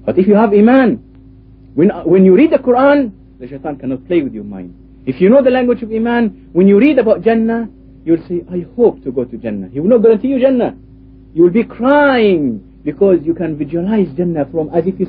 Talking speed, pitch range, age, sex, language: 225 wpm, 155-240 Hz, 50-69, male, English